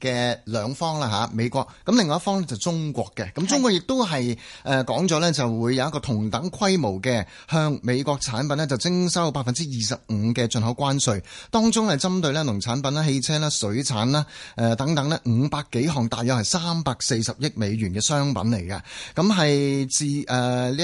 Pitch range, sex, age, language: 115-155 Hz, male, 30-49, Chinese